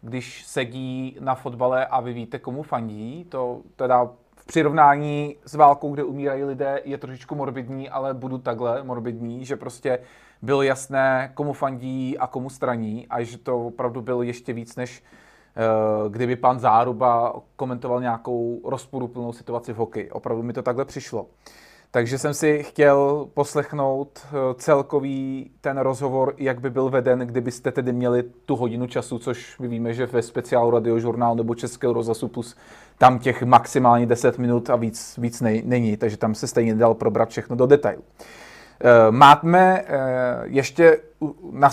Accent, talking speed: native, 155 wpm